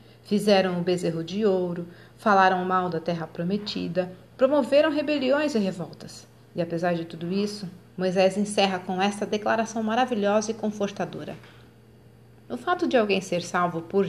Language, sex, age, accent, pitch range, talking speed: Portuguese, female, 40-59, Brazilian, 180-235 Hz, 145 wpm